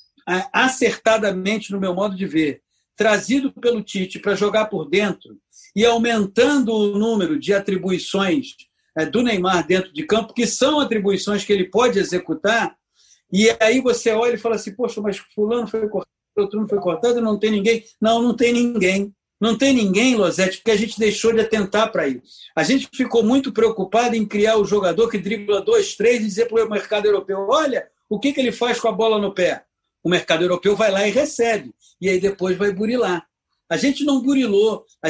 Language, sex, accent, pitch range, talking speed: Portuguese, male, Brazilian, 195-240 Hz, 190 wpm